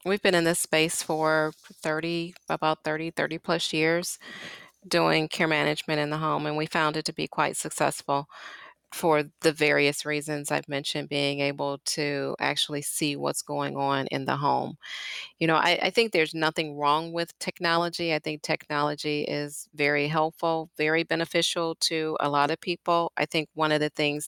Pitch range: 145-165 Hz